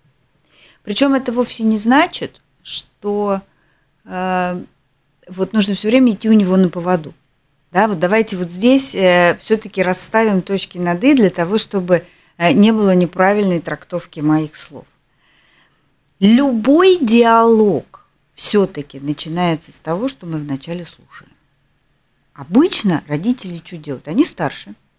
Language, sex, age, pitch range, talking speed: Russian, female, 40-59, 160-245 Hz, 120 wpm